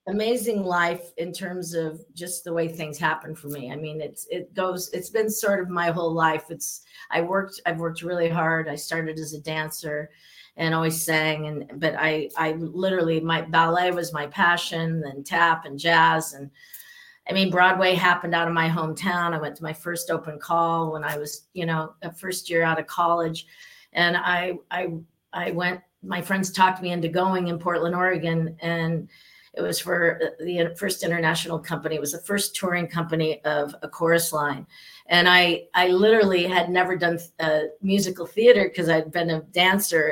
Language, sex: English, female